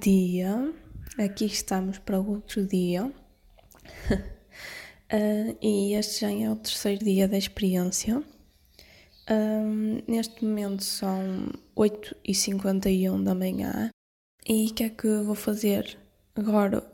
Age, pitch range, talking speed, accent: 10-29, 200-220 Hz, 115 wpm, Brazilian